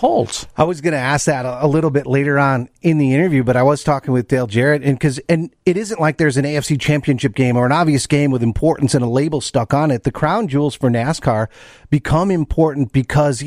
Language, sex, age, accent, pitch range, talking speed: English, male, 40-59, American, 135-175 Hz, 235 wpm